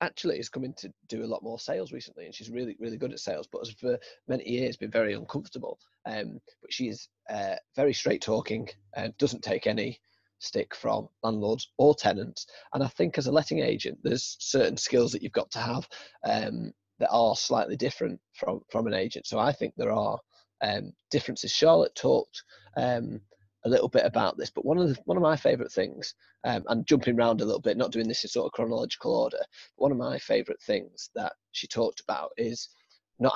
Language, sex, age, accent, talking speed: English, male, 30-49, British, 210 wpm